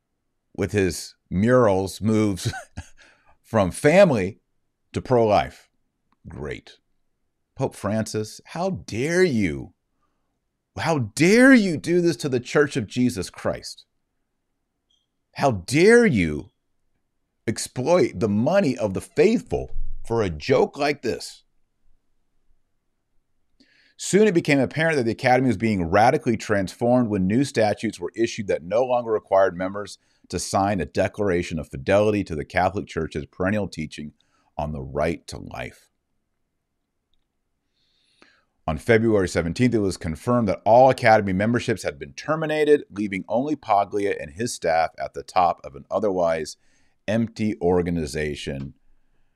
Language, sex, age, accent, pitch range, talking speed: English, male, 40-59, American, 90-125 Hz, 125 wpm